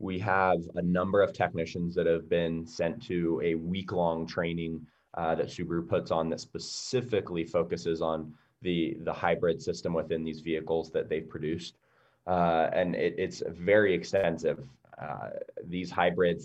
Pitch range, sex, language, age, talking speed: 80-90 Hz, male, English, 20-39, 155 wpm